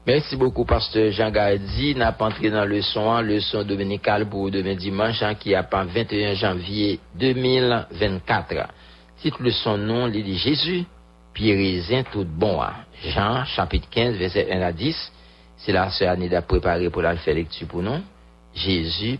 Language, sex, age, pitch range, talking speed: English, male, 60-79, 85-110 Hz, 155 wpm